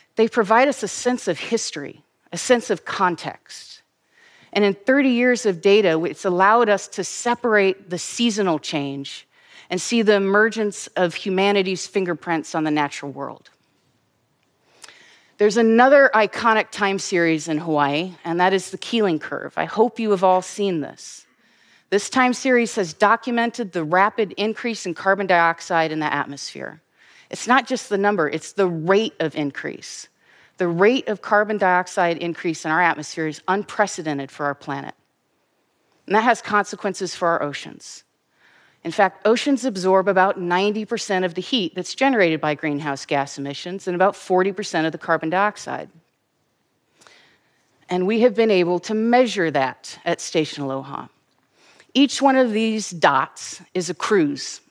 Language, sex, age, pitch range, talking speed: Arabic, female, 30-49, 170-220 Hz, 155 wpm